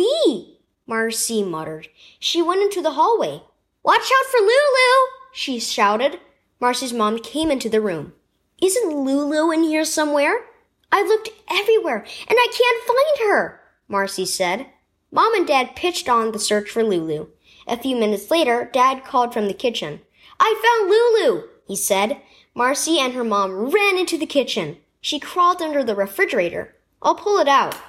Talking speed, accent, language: 160 wpm, American, English